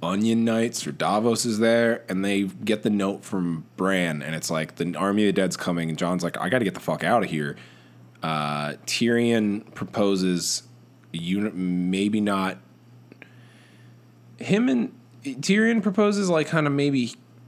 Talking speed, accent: 165 wpm, American